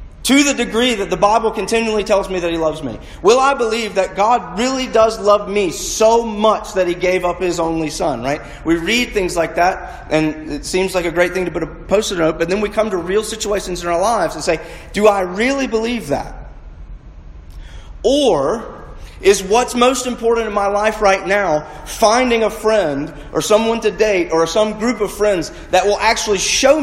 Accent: American